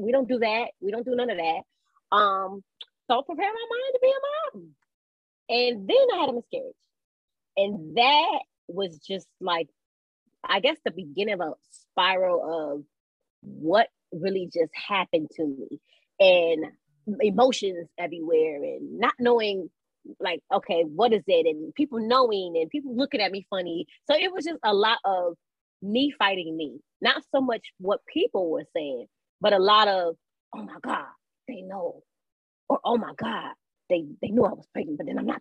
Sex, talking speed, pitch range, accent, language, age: female, 175 wpm, 185-270 Hz, American, English, 20-39